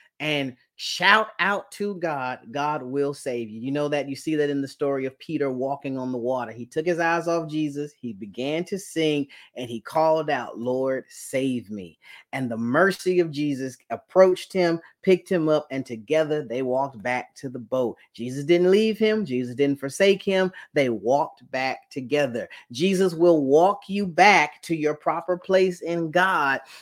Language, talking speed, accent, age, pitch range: English, 185 wpm, American, 30-49, 140-195 Hz